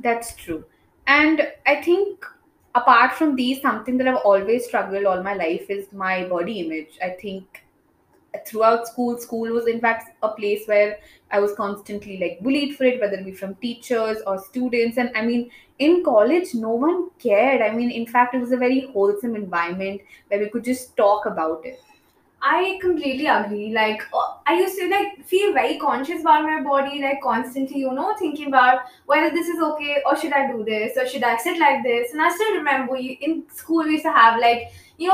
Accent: Indian